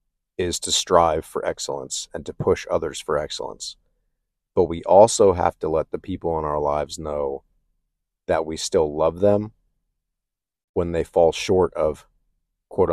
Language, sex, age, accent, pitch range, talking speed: English, male, 40-59, American, 80-90 Hz, 160 wpm